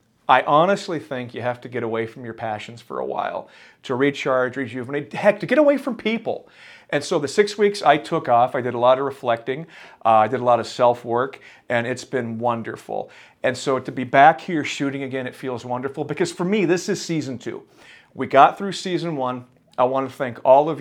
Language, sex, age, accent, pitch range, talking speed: English, male, 40-59, American, 120-160 Hz, 220 wpm